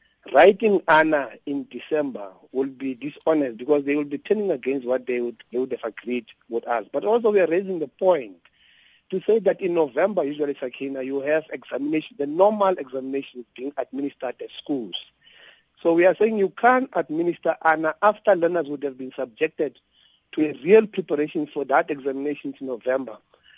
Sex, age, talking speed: male, 50-69, 175 wpm